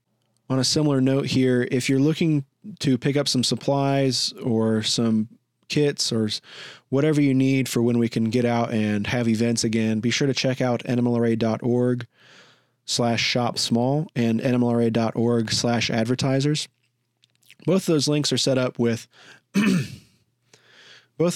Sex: male